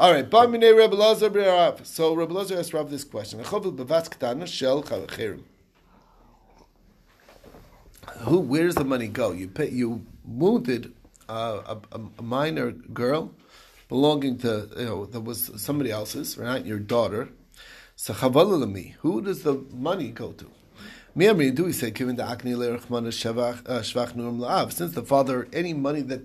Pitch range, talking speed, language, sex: 120-155 Hz, 110 wpm, English, male